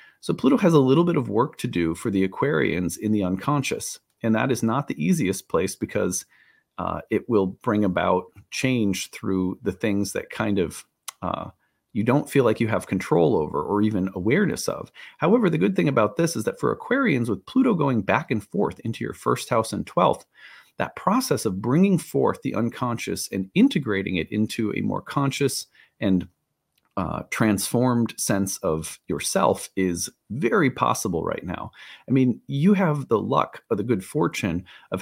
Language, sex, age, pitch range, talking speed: English, male, 40-59, 95-140 Hz, 185 wpm